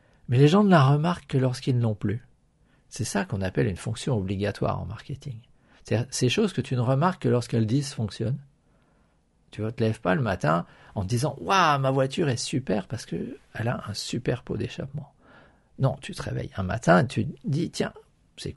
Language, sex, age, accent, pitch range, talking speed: French, male, 50-69, French, 110-150 Hz, 215 wpm